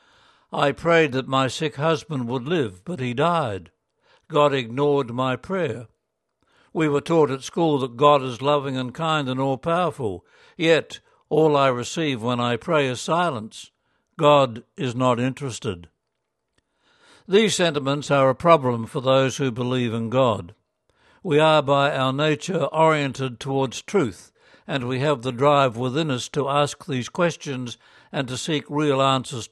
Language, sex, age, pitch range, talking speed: English, male, 60-79, 125-150 Hz, 155 wpm